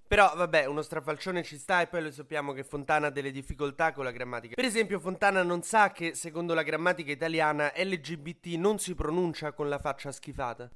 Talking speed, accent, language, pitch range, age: 200 wpm, native, Italian, 135-175 Hz, 30-49